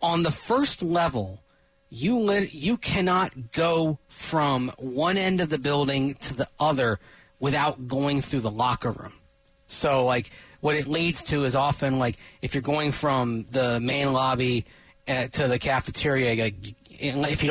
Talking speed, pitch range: 160 wpm, 125-165 Hz